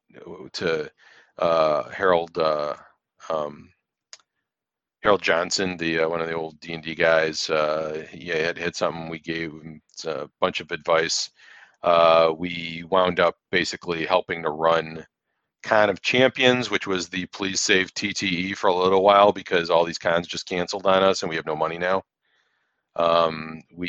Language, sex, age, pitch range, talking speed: English, male, 40-59, 80-100 Hz, 165 wpm